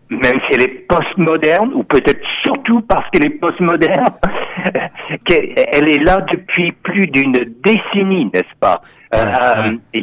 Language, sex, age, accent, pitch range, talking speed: French, male, 60-79, French, 125-205 Hz, 130 wpm